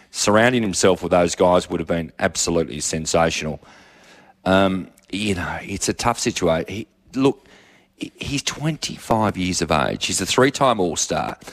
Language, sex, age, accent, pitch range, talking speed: English, male, 30-49, Australian, 90-110 Hz, 150 wpm